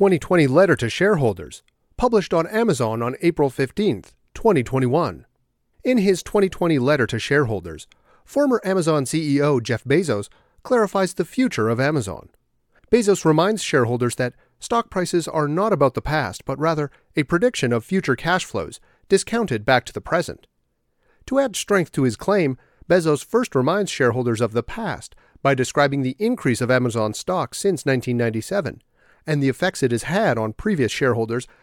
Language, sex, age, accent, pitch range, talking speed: English, male, 40-59, American, 125-190 Hz, 155 wpm